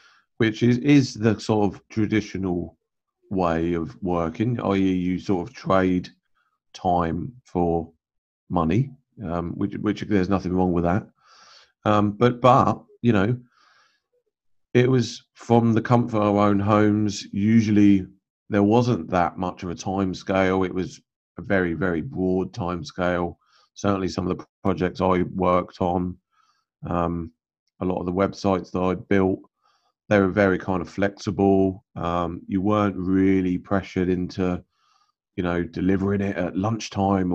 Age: 30-49